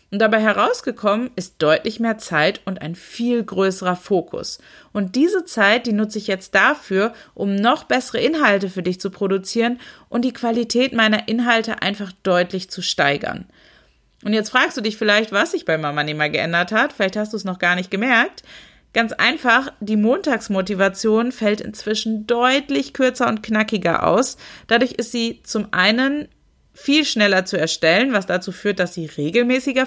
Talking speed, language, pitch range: 170 wpm, German, 200-255 Hz